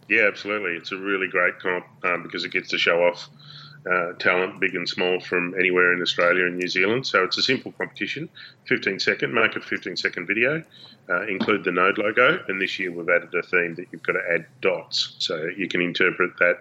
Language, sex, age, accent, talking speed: English, male, 30-49, Australian, 220 wpm